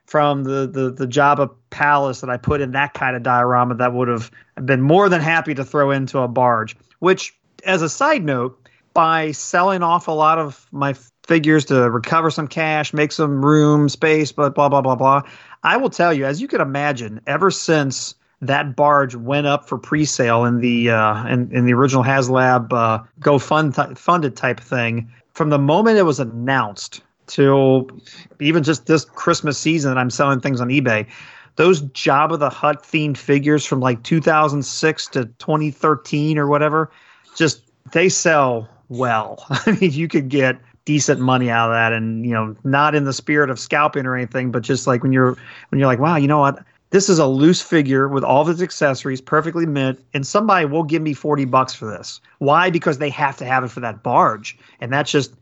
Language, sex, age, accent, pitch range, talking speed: English, male, 30-49, American, 130-155 Hz, 205 wpm